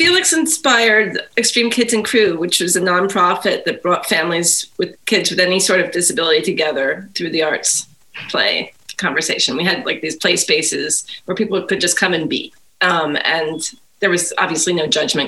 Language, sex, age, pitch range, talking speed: English, female, 30-49, 175-220 Hz, 180 wpm